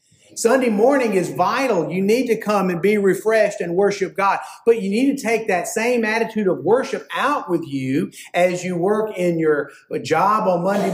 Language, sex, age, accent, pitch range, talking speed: English, male, 50-69, American, 165-220 Hz, 190 wpm